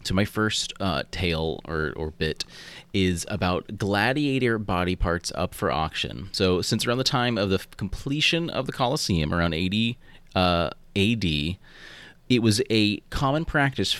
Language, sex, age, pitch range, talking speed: English, male, 30-49, 80-110 Hz, 155 wpm